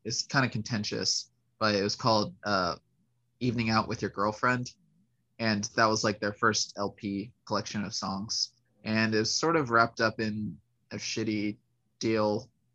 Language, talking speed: English, 165 wpm